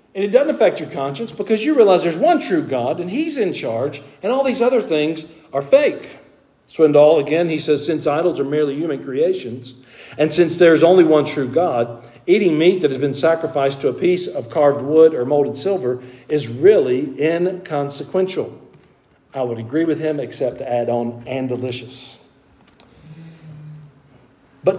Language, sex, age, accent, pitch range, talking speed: English, male, 50-69, American, 130-190 Hz, 170 wpm